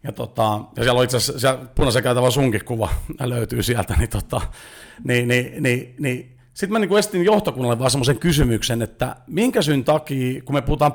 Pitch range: 125-160 Hz